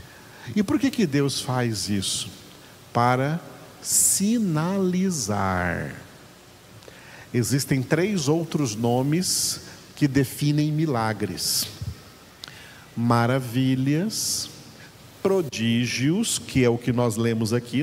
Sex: male